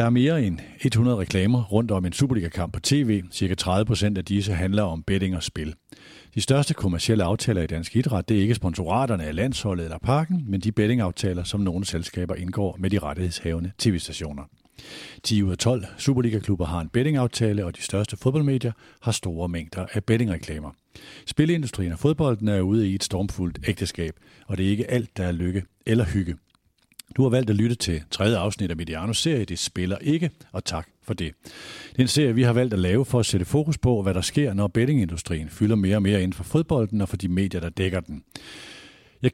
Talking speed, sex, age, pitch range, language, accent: 205 wpm, male, 50-69, 90-120 Hz, Danish, native